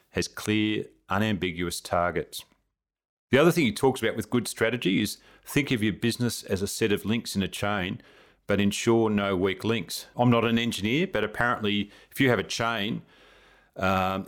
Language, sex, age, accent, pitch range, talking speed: English, male, 40-59, Australian, 100-115 Hz, 180 wpm